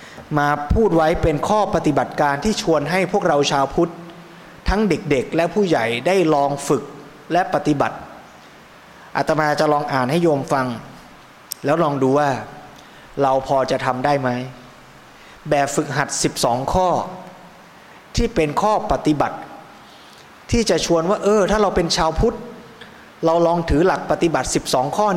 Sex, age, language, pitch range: male, 20-39, Thai, 130-170 Hz